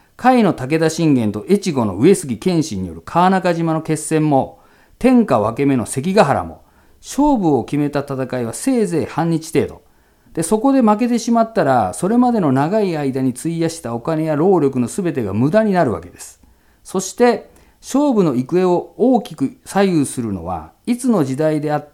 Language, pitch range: Japanese, 135-210 Hz